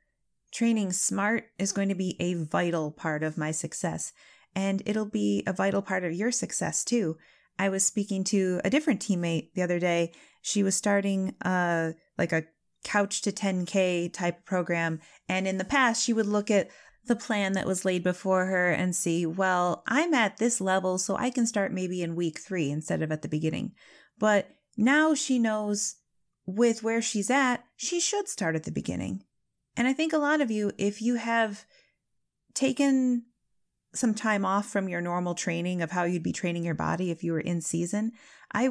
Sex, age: female, 30-49